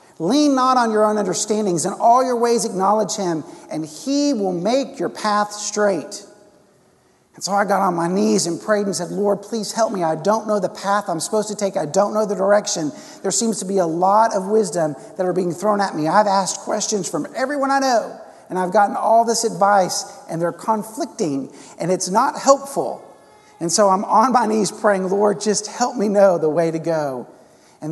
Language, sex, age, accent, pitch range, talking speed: English, male, 50-69, American, 155-210 Hz, 215 wpm